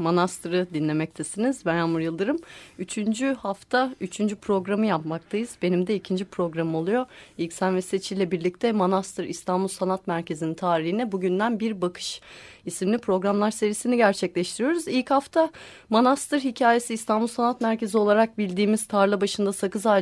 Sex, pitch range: female, 180-240 Hz